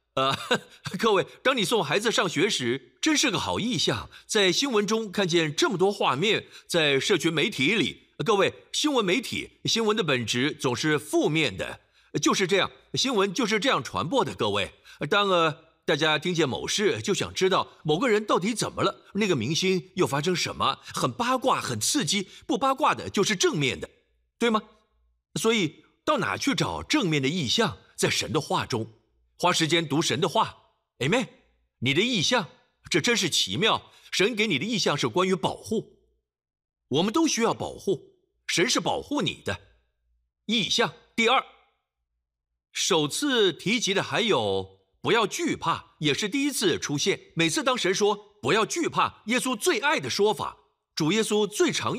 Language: Chinese